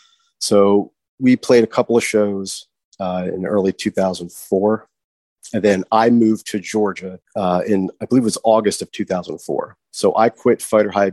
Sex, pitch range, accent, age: male, 95-110 Hz, American, 30-49